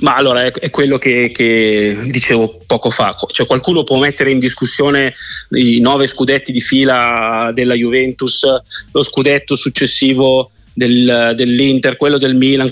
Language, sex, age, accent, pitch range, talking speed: Italian, male, 30-49, native, 125-145 Hz, 130 wpm